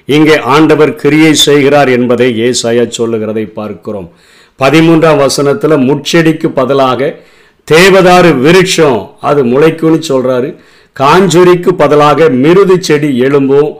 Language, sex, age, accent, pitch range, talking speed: Tamil, male, 50-69, native, 130-160 Hz, 90 wpm